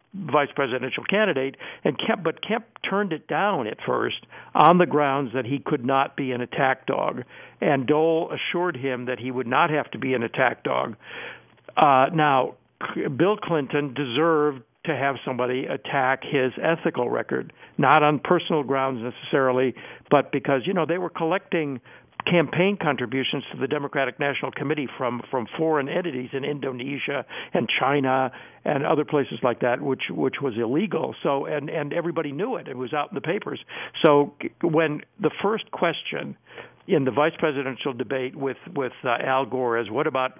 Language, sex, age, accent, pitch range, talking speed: English, male, 60-79, American, 130-155 Hz, 170 wpm